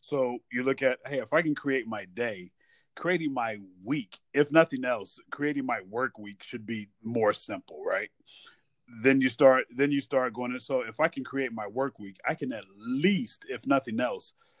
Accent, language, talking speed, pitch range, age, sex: American, English, 200 wpm, 115-140 Hz, 30-49, male